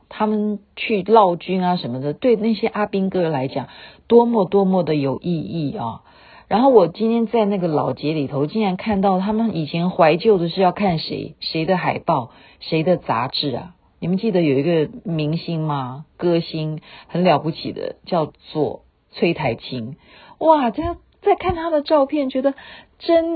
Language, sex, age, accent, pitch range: Chinese, female, 50-69, native, 155-230 Hz